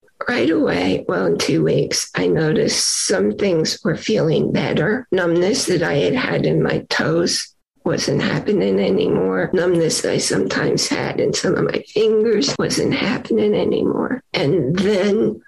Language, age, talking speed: English, 50-69, 145 wpm